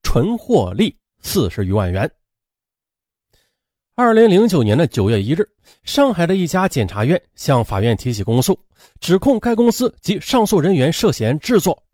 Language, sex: Chinese, male